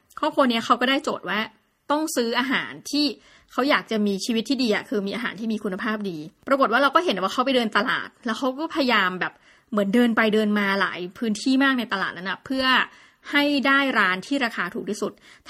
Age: 20-39